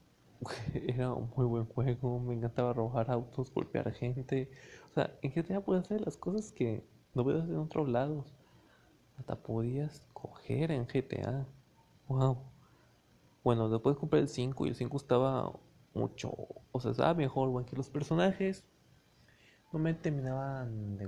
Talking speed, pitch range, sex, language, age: 150 wpm, 115-145 Hz, male, Spanish, 20-39